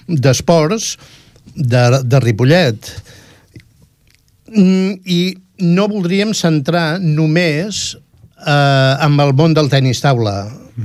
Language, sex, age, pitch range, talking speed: Italian, male, 60-79, 125-155 Hz, 100 wpm